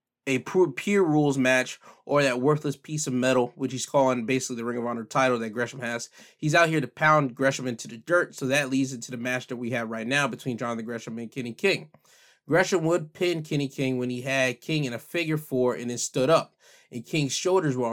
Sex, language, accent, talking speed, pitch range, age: male, English, American, 230 wpm, 125-150 Hz, 20-39